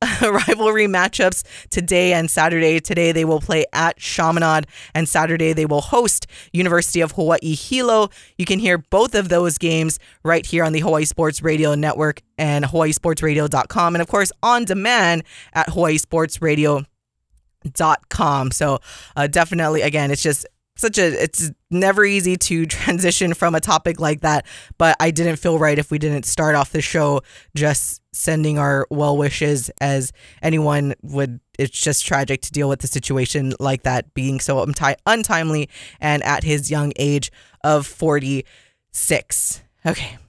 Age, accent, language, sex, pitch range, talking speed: 20-39, American, English, female, 145-180 Hz, 160 wpm